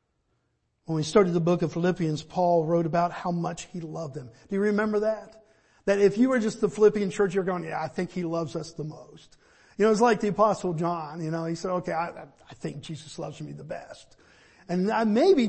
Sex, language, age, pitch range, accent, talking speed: male, English, 50-69, 175-235 Hz, American, 230 wpm